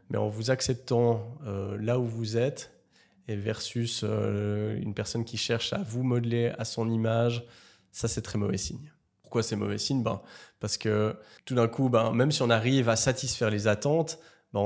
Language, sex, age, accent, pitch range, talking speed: French, male, 20-39, French, 105-120 Hz, 190 wpm